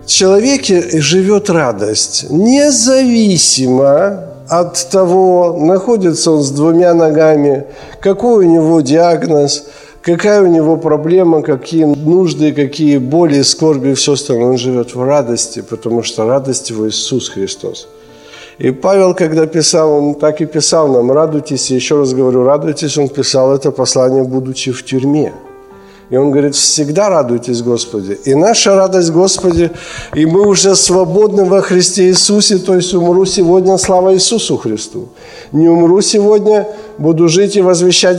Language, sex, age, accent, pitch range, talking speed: Ukrainian, male, 50-69, native, 135-185 Hz, 140 wpm